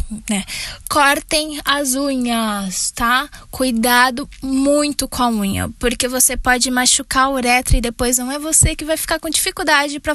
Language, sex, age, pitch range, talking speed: Portuguese, female, 10-29, 220-270 Hz, 160 wpm